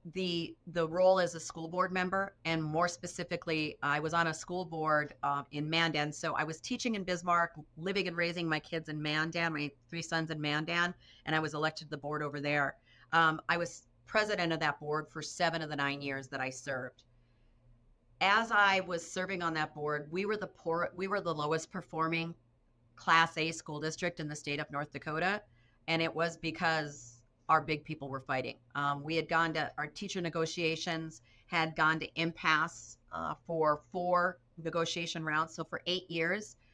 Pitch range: 145-170 Hz